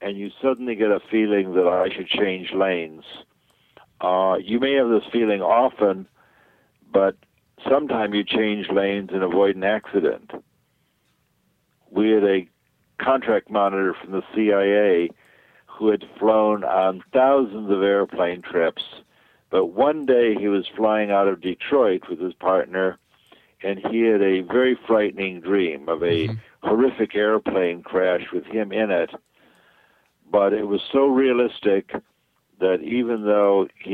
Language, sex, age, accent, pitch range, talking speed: English, male, 60-79, American, 95-110 Hz, 140 wpm